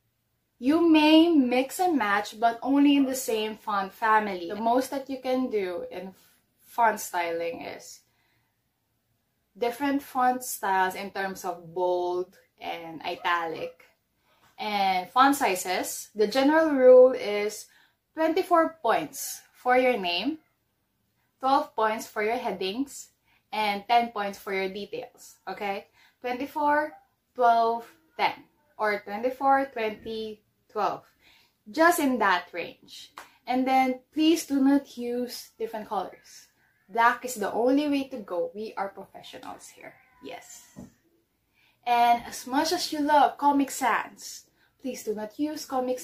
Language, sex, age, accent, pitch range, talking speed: English, female, 20-39, Filipino, 195-275 Hz, 130 wpm